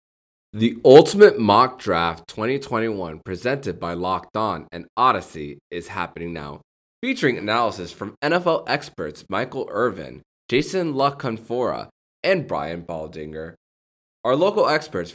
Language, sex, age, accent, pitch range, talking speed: English, male, 20-39, American, 85-125 Hz, 115 wpm